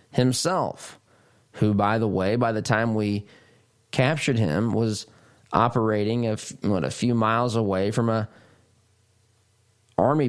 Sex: male